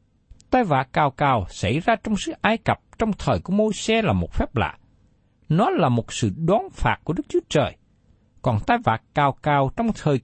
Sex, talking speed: male, 210 wpm